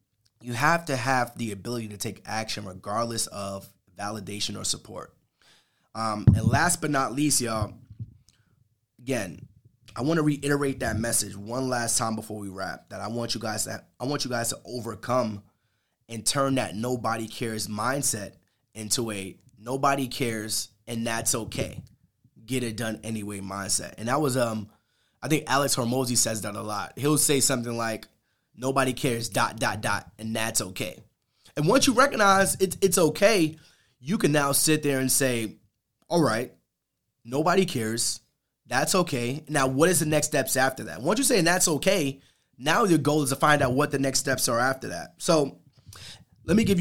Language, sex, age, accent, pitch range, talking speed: English, male, 20-39, American, 110-145 Hz, 180 wpm